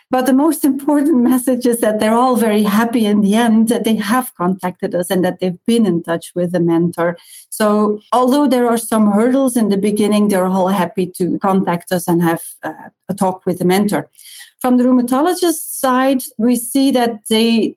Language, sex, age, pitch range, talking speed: English, female, 40-59, 185-230 Hz, 200 wpm